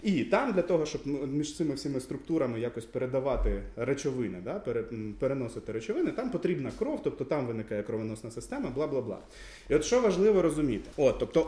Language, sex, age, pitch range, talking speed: Ukrainian, male, 20-39, 115-155 Hz, 160 wpm